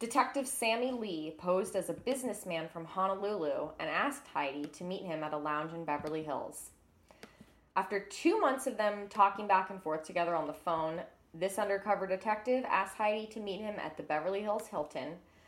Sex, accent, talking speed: female, American, 180 wpm